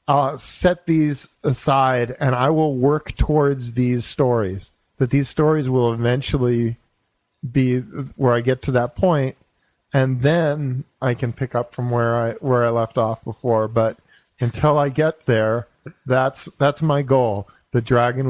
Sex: male